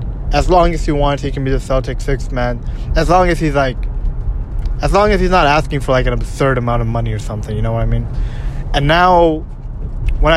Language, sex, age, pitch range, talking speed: English, male, 20-39, 125-155 Hz, 230 wpm